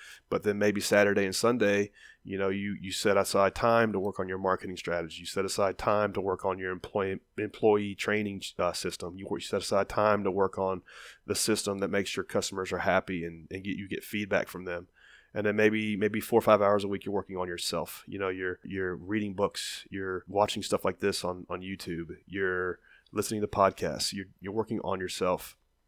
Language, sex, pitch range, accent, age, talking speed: English, male, 95-110 Hz, American, 30-49, 215 wpm